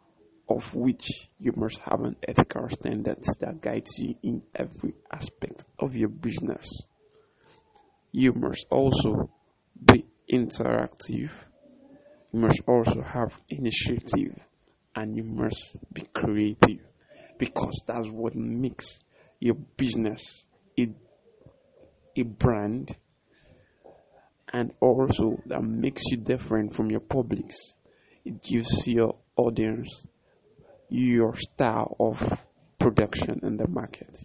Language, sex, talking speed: English, male, 105 wpm